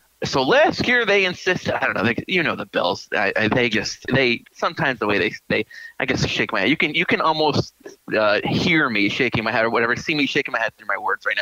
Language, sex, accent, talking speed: English, male, American, 270 wpm